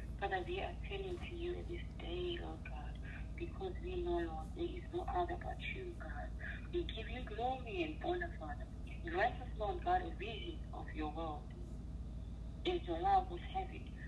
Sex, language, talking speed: female, English, 180 wpm